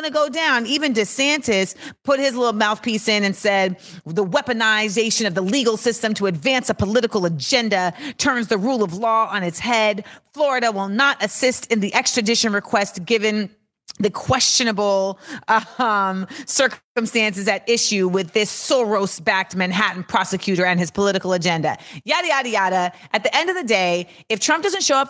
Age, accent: 30-49, American